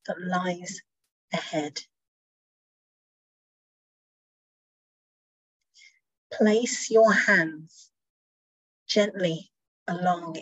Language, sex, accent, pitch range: English, female, British, 170-210 Hz